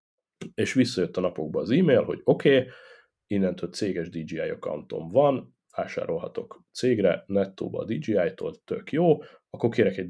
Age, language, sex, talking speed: 30-49, Hungarian, male, 135 wpm